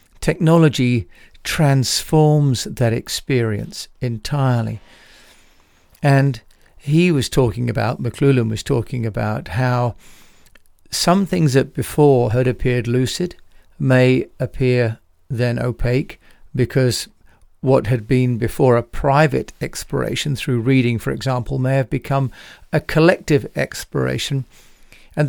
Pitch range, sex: 120-140 Hz, male